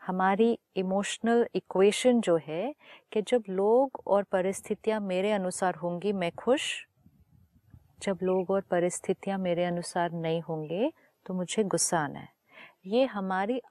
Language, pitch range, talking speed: Hindi, 175-230 Hz, 130 wpm